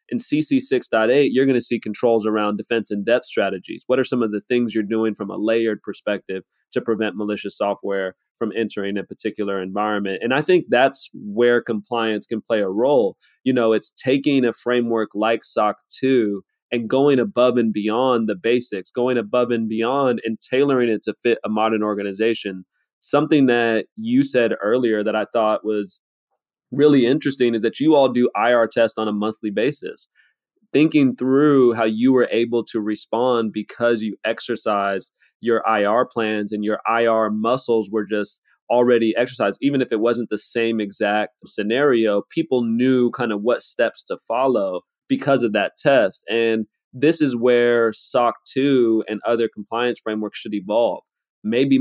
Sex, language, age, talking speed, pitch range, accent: male, English, 20-39, 175 wpm, 110-125 Hz, American